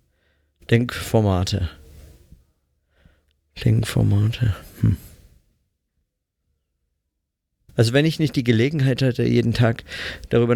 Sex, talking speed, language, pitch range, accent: male, 70 wpm, German, 90-125 Hz, German